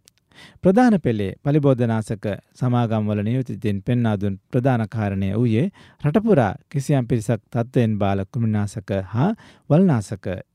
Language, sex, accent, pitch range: Japanese, male, Indian, 105-150 Hz